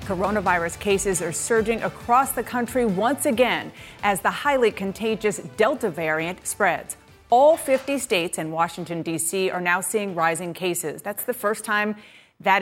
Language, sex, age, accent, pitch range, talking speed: English, female, 30-49, American, 180-225 Hz, 150 wpm